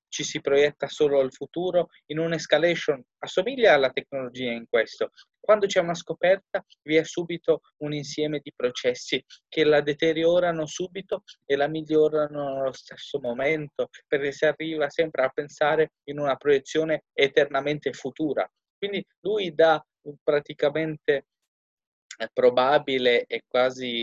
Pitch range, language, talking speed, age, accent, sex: 130-180 Hz, Italian, 130 wpm, 20-39, native, male